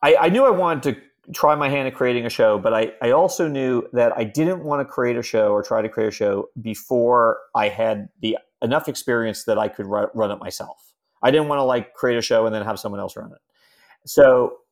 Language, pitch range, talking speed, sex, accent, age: English, 110-135 Hz, 250 wpm, male, American, 40-59